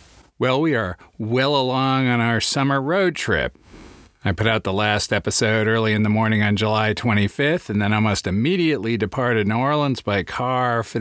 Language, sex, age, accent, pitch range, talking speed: English, male, 40-59, American, 95-120 Hz, 180 wpm